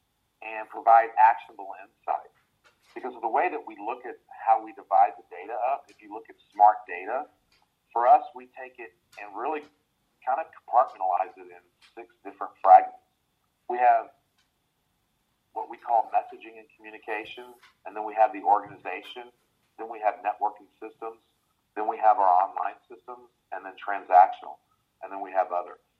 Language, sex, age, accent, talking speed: English, male, 40-59, American, 165 wpm